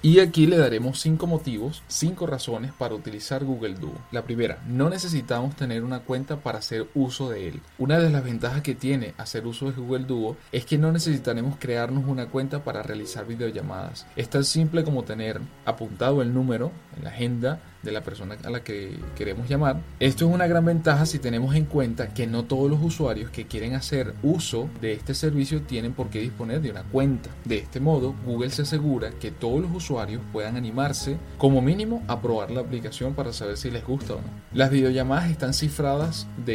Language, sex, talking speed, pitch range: Spanish, male, 200 wpm, 115-145 Hz